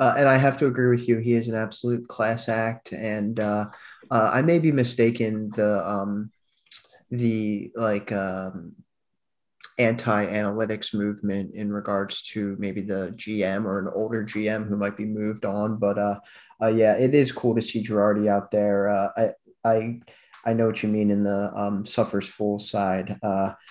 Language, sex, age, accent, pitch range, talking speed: English, male, 20-39, American, 105-130 Hz, 180 wpm